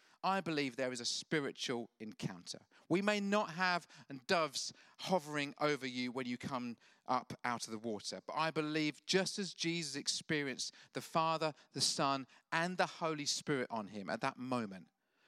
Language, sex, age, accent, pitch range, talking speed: English, male, 40-59, British, 155-205 Hz, 170 wpm